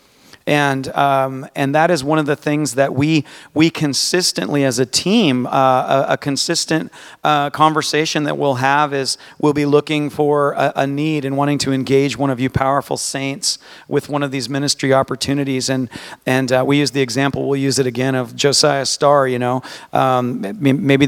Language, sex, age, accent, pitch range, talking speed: English, male, 40-59, American, 130-145 Hz, 190 wpm